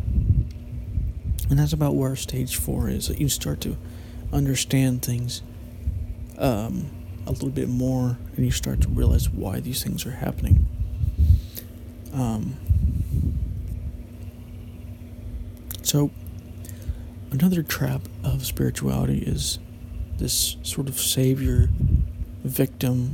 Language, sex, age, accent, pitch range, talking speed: English, male, 40-59, American, 85-125 Hz, 100 wpm